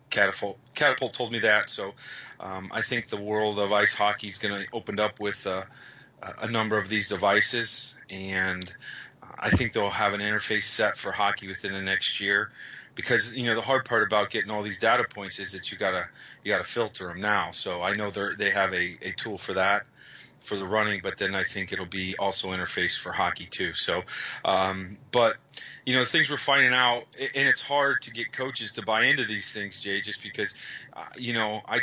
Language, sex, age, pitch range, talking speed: English, male, 30-49, 100-120 Hz, 215 wpm